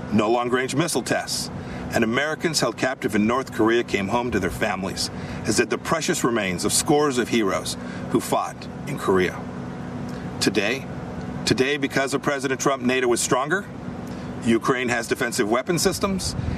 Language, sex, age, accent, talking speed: English, male, 50-69, American, 155 wpm